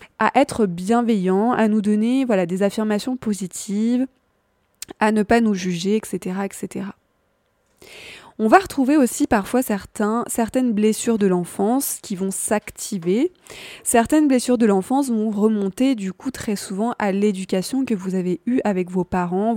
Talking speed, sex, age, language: 150 wpm, female, 20-39, French